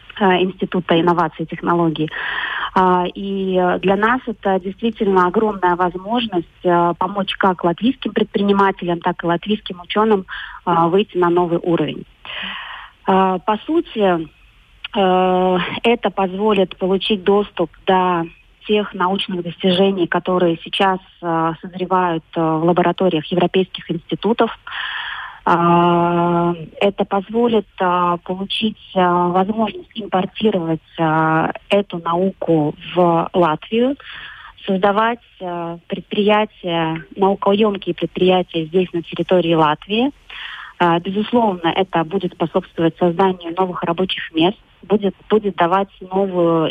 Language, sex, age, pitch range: Russian, female, 30-49, 170-195 Hz